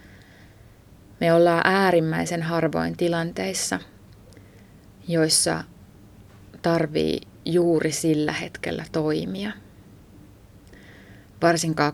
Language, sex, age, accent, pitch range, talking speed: Finnish, female, 30-49, native, 100-165 Hz, 60 wpm